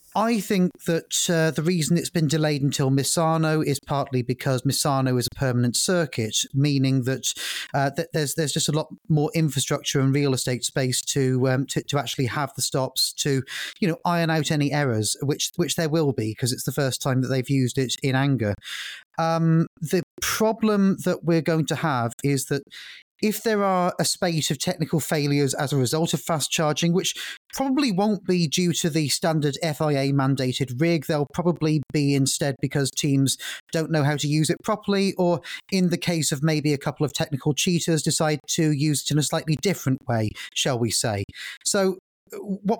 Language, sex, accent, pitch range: English, male, British, 135-170 Hz